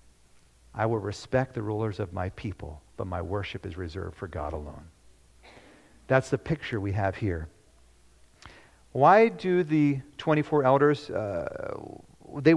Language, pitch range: English, 90-140 Hz